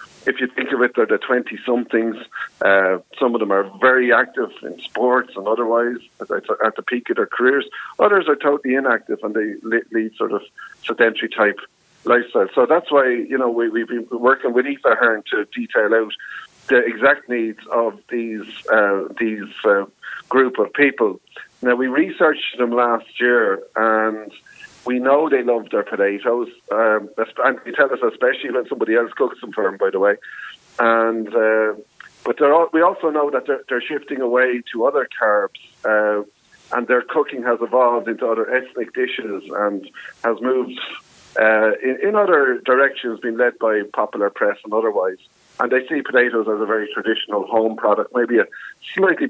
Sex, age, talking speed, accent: male, 50-69, 180 wpm, Irish